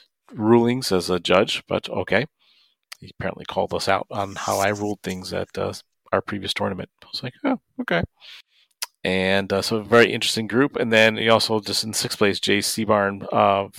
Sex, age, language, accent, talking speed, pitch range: male, 40-59, English, American, 190 wpm, 95-115 Hz